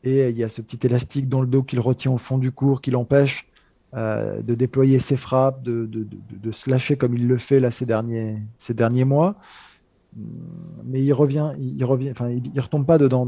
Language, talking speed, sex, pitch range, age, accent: French, 210 wpm, male, 120-140 Hz, 20-39, French